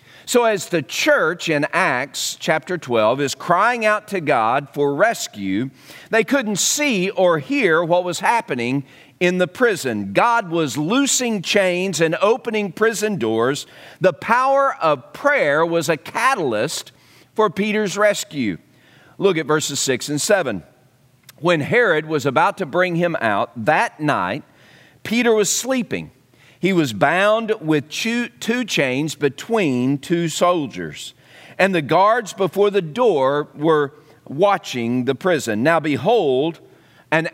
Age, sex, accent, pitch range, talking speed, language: 50-69, male, American, 140-210 Hz, 135 wpm, English